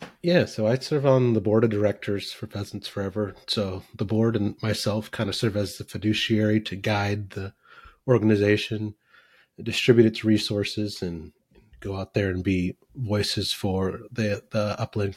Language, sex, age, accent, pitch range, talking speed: English, male, 30-49, American, 100-115 Hz, 160 wpm